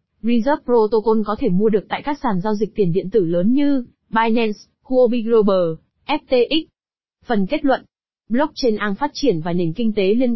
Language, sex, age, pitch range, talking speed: Vietnamese, female, 20-39, 200-260 Hz, 185 wpm